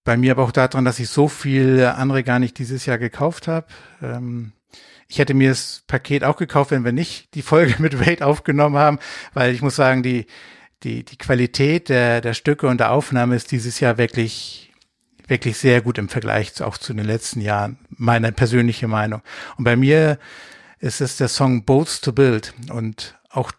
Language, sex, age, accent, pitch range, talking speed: German, male, 60-79, German, 120-140 Hz, 195 wpm